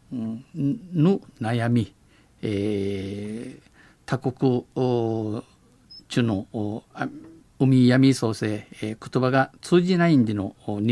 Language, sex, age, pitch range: Japanese, male, 50-69, 115-145 Hz